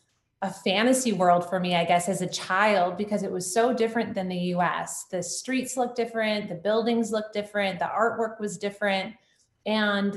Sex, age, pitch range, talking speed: female, 30-49, 185-225 Hz, 185 wpm